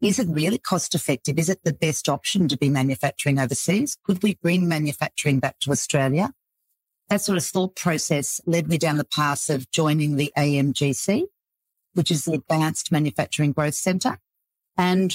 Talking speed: 165 wpm